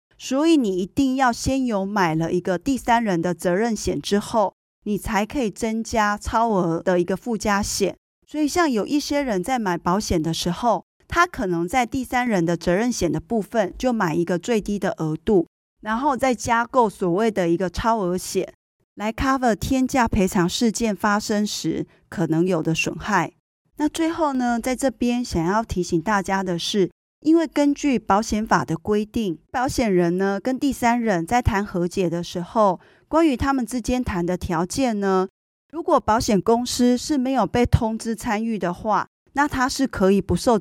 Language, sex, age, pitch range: Chinese, female, 30-49, 185-255 Hz